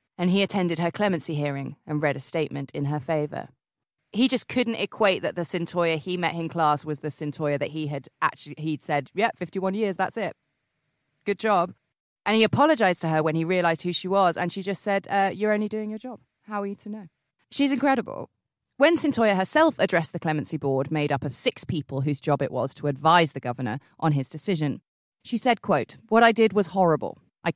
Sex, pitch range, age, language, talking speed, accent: female, 155-200 Hz, 30-49, English, 220 wpm, British